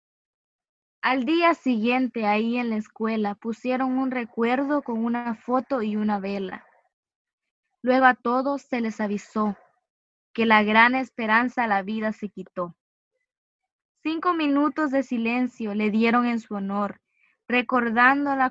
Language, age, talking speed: Spanish, 20-39, 135 wpm